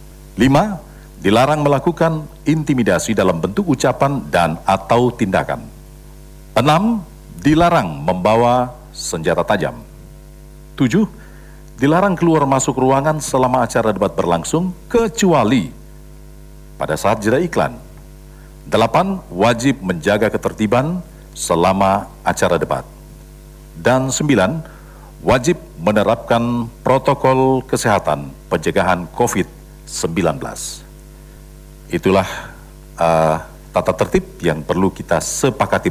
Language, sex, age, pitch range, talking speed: Indonesian, male, 50-69, 105-155 Hz, 90 wpm